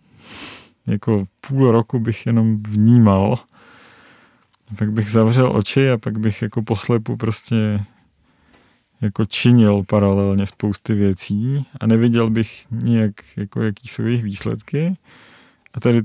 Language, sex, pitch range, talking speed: Czech, male, 115-130 Hz, 115 wpm